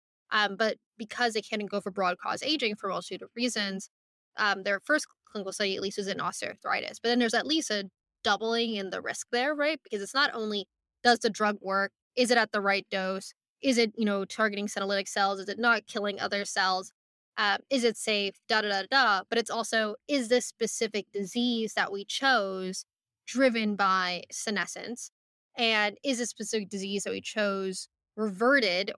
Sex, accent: female, American